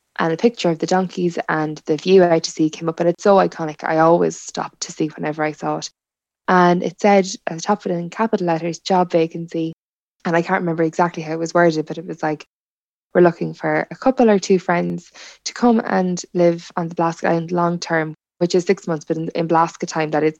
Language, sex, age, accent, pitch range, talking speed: English, female, 10-29, Irish, 160-190 Hz, 240 wpm